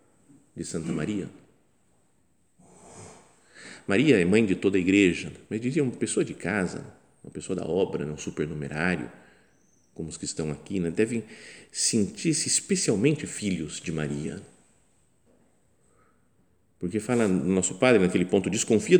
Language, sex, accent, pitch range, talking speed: Portuguese, male, Brazilian, 85-110 Hz, 130 wpm